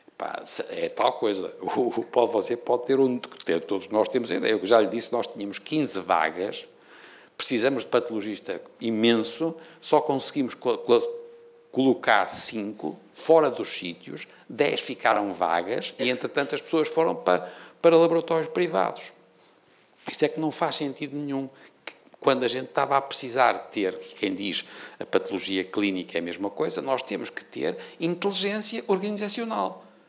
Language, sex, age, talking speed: Portuguese, male, 60-79, 140 wpm